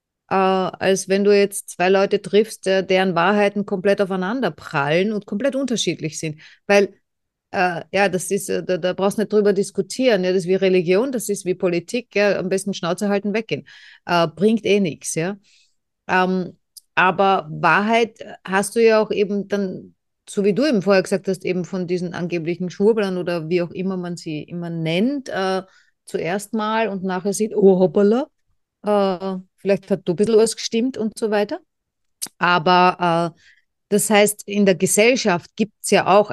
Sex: female